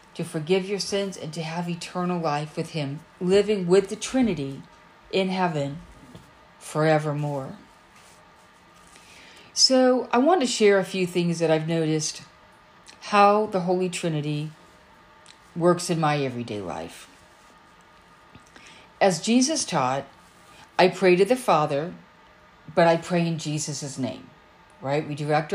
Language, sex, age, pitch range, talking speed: English, female, 50-69, 155-200 Hz, 130 wpm